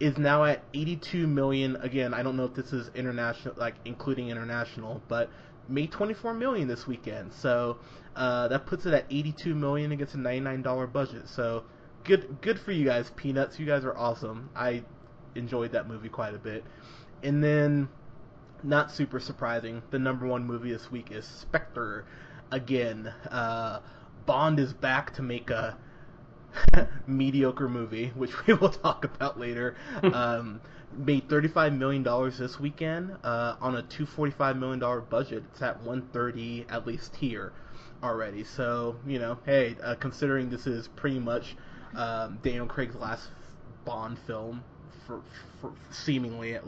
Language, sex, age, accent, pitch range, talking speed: English, male, 20-39, American, 120-145 Hz, 160 wpm